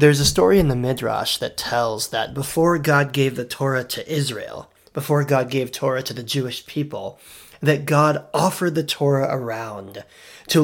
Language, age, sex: English, 30-49, male